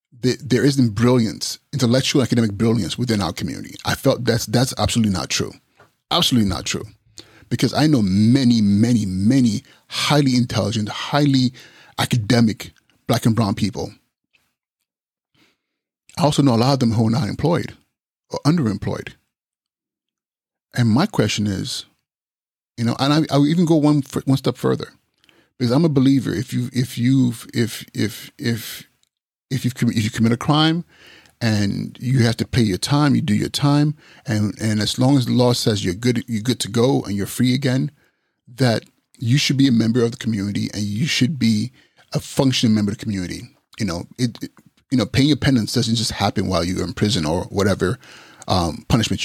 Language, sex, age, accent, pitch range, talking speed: English, male, 30-49, American, 110-130 Hz, 180 wpm